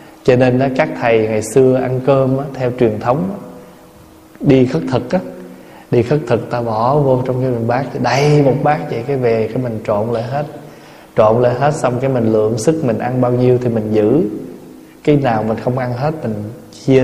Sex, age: male, 20-39